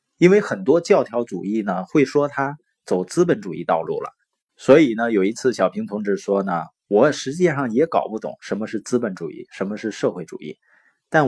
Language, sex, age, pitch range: Chinese, male, 30-49, 120-170 Hz